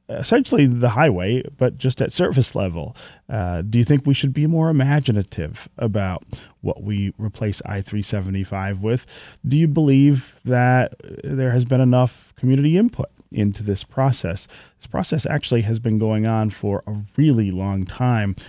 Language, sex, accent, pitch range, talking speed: English, male, American, 100-130 Hz, 155 wpm